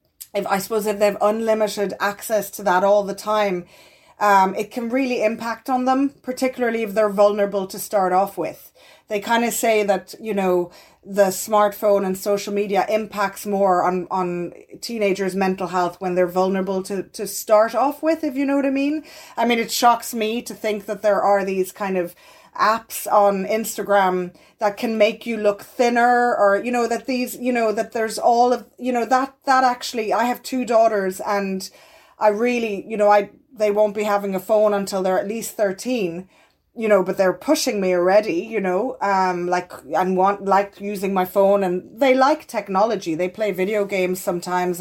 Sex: female